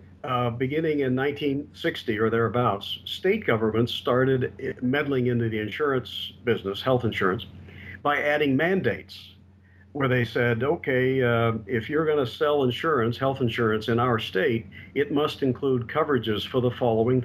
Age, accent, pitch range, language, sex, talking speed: 50-69, American, 110-135 Hz, English, male, 145 wpm